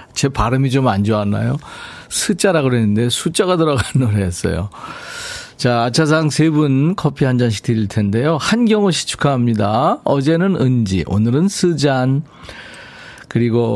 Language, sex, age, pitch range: Korean, male, 40-59, 110-160 Hz